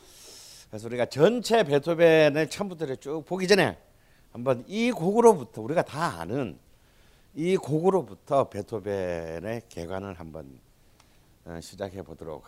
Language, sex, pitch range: Korean, male, 95-150 Hz